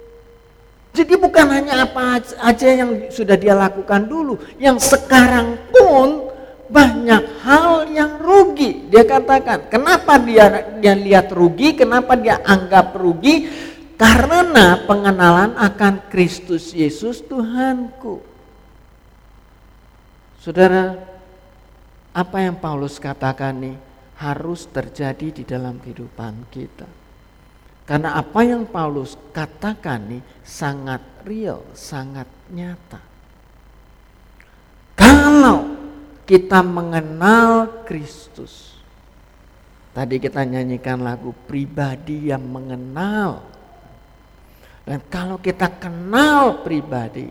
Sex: male